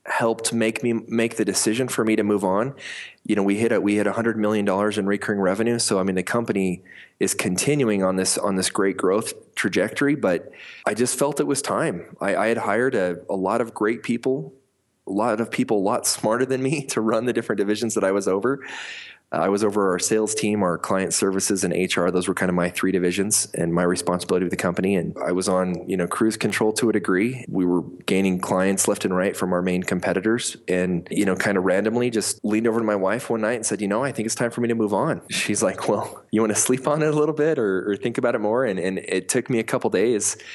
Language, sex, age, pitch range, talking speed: English, male, 20-39, 95-115 Hz, 255 wpm